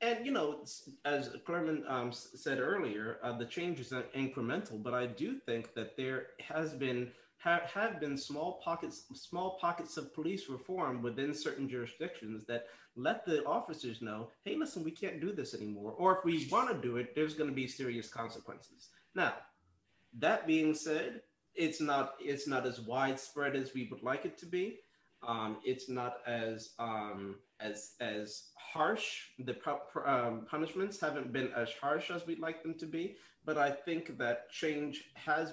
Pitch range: 115-155 Hz